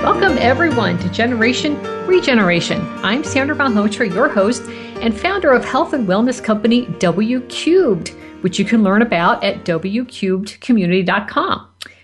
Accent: American